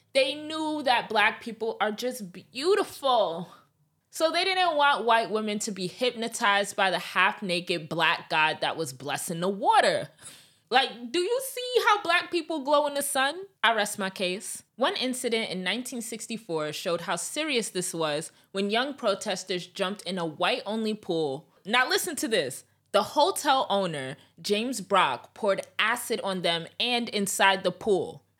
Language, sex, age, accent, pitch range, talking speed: English, female, 20-39, American, 175-245 Hz, 160 wpm